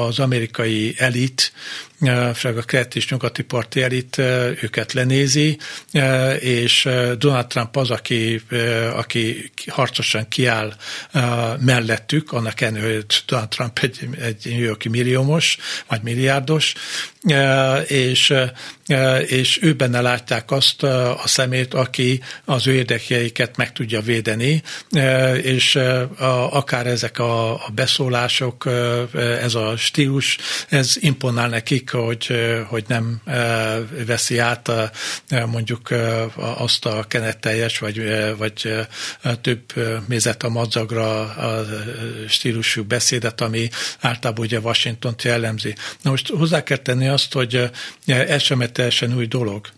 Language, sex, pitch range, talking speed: Hungarian, male, 115-130 Hz, 110 wpm